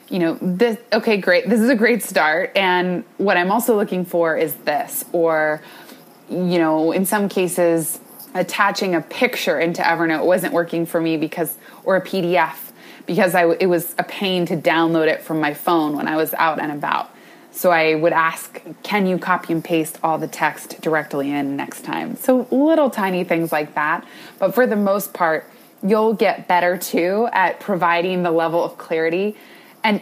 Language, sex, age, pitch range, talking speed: English, female, 20-39, 165-210 Hz, 185 wpm